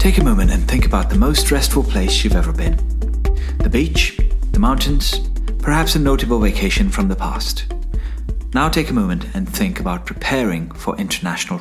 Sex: male